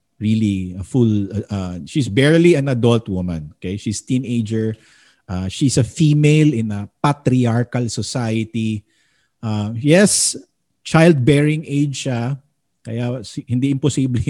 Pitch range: 110-155 Hz